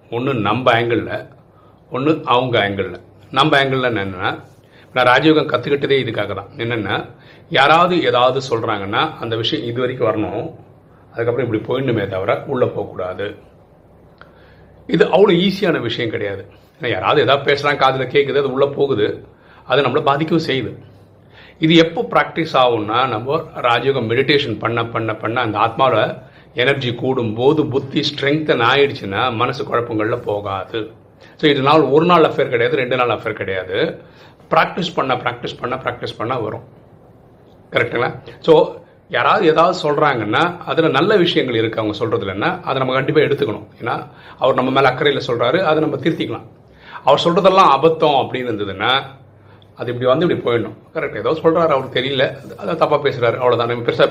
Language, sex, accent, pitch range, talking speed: Tamil, male, native, 115-155 Hz, 145 wpm